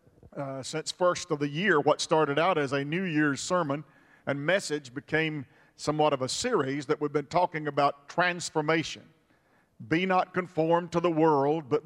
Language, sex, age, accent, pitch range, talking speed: English, male, 50-69, American, 150-195 Hz, 170 wpm